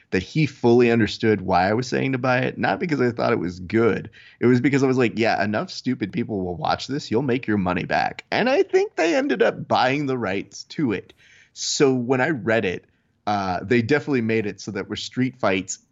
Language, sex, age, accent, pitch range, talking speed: English, male, 30-49, American, 100-125 Hz, 235 wpm